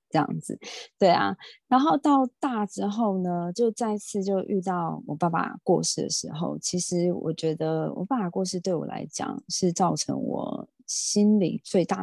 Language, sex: Chinese, female